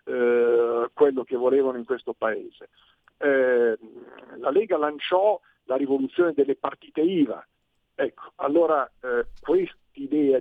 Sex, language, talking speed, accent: male, Italian, 115 wpm, native